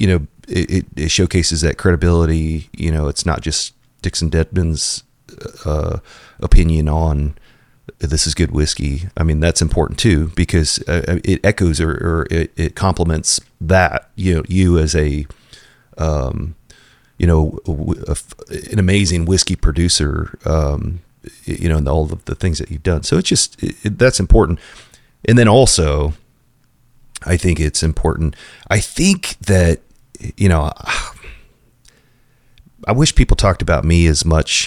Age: 30-49